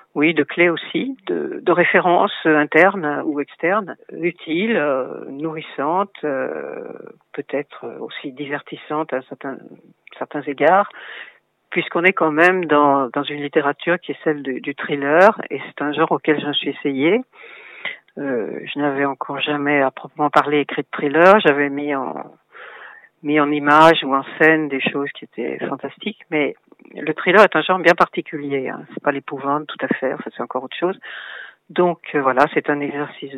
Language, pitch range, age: French, 145-175 Hz, 50-69